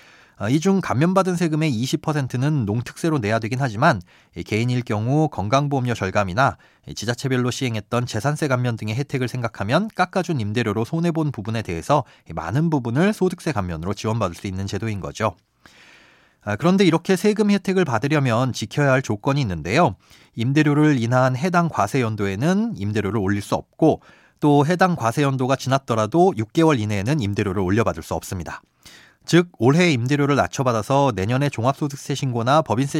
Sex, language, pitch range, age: male, Korean, 110-155 Hz, 30-49